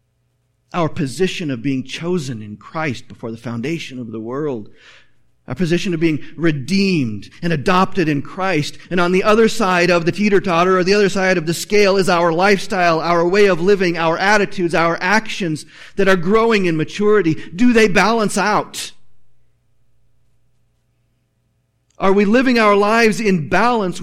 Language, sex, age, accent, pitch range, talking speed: English, male, 40-59, American, 125-180 Hz, 160 wpm